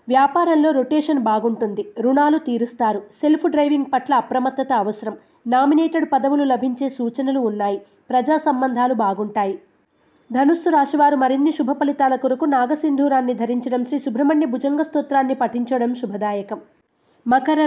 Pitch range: 240-290 Hz